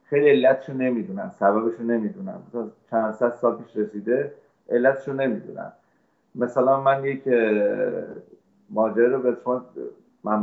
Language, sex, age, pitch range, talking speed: English, male, 30-49, 105-125 Hz, 115 wpm